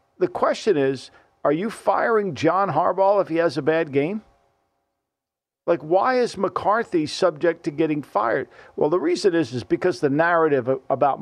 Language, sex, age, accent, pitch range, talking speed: English, male, 50-69, American, 150-185 Hz, 165 wpm